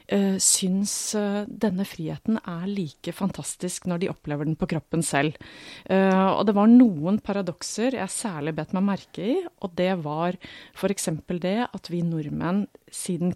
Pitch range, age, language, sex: 155-200 Hz, 30-49, English, female